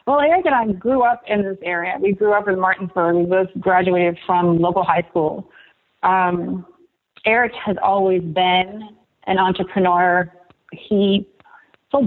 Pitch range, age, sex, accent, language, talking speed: 180-235 Hz, 40-59, female, American, English, 150 wpm